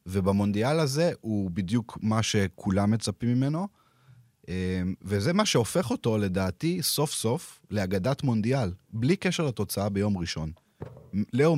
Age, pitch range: 30-49, 90-120 Hz